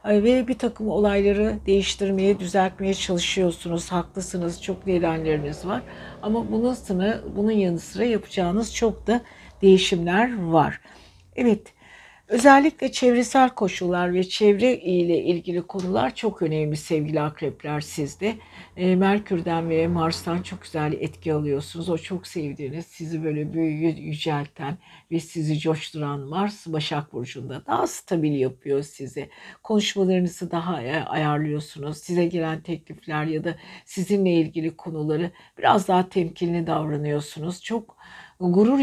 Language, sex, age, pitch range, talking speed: Turkish, female, 60-79, 160-195 Hz, 120 wpm